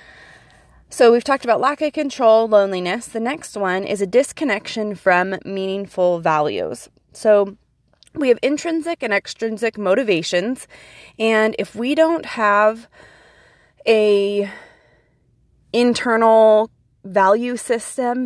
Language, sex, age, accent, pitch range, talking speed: English, female, 20-39, American, 180-235 Hz, 110 wpm